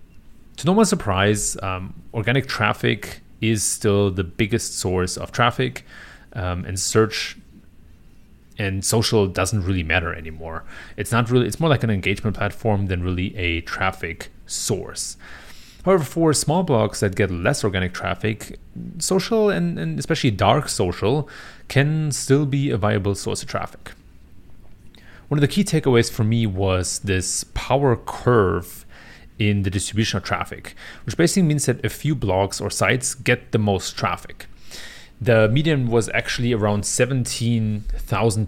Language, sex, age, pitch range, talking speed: English, male, 30-49, 95-125 Hz, 150 wpm